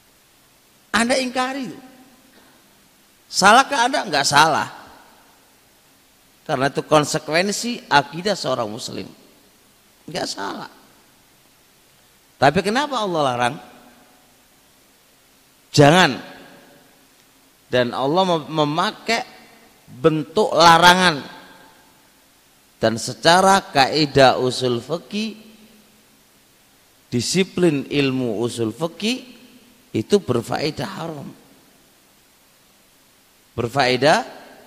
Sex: male